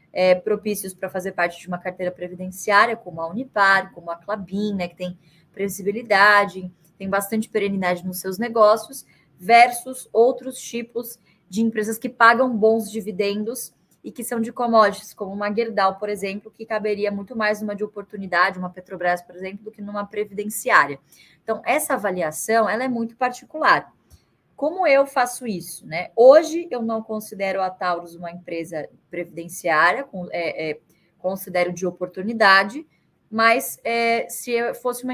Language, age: Portuguese, 10-29